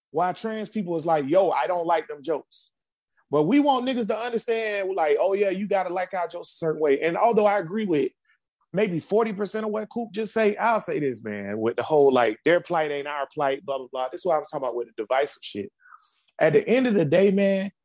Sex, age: male, 30-49